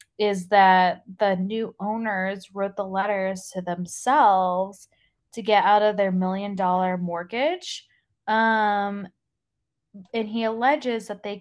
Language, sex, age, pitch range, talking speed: English, female, 20-39, 185-225 Hz, 125 wpm